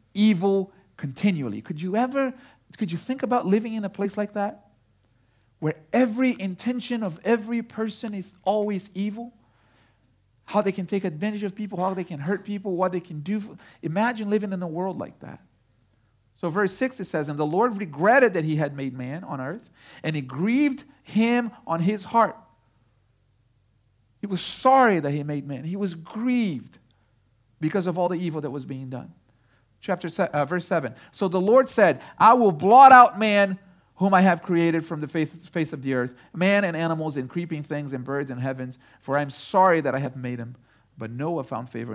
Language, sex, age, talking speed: English, male, 40-59, 195 wpm